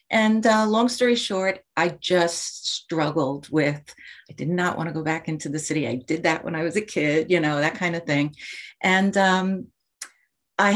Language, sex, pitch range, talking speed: English, female, 155-190 Hz, 200 wpm